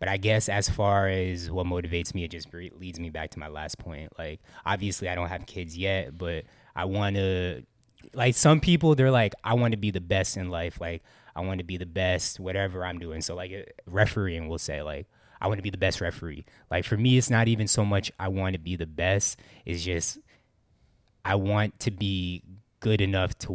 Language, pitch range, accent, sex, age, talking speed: English, 85-100 Hz, American, male, 20-39, 225 wpm